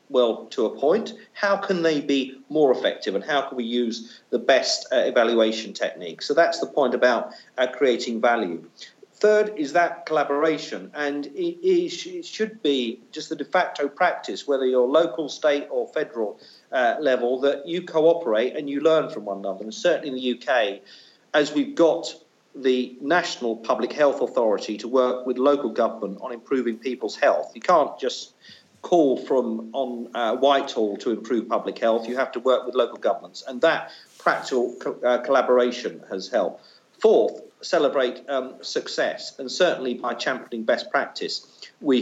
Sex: male